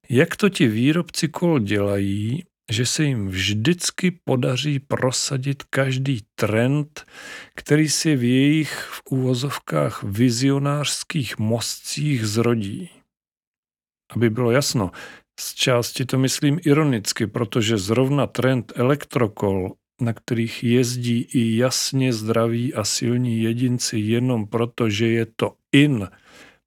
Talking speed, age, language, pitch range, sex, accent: 110 wpm, 40-59, Czech, 105-130 Hz, male, native